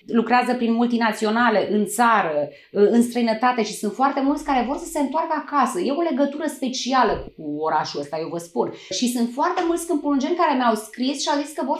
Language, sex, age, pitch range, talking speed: Romanian, female, 30-49, 220-320 Hz, 205 wpm